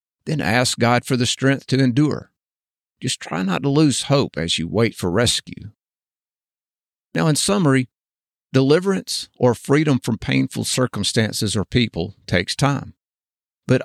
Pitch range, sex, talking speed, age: 115-145 Hz, male, 145 wpm, 50-69